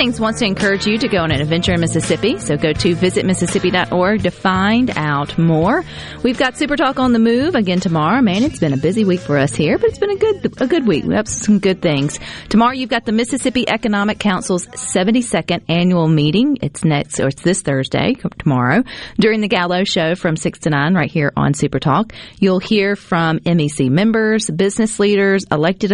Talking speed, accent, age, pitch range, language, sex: 205 wpm, American, 40-59, 160-205 Hz, English, female